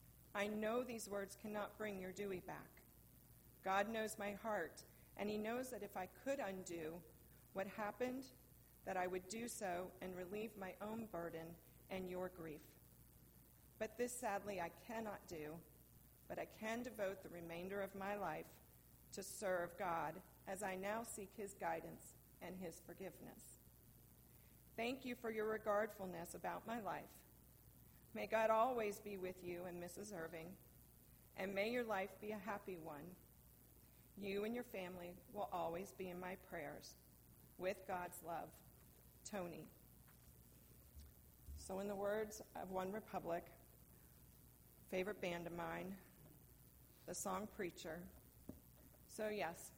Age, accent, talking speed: 40-59, American, 140 wpm